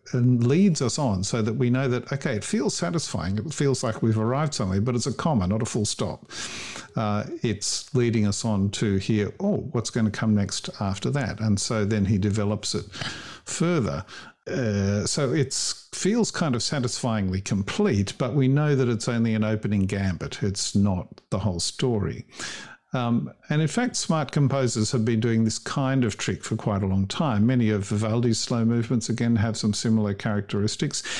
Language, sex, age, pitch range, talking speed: English, male, 50-69, 105-130 Hz, 190 wpm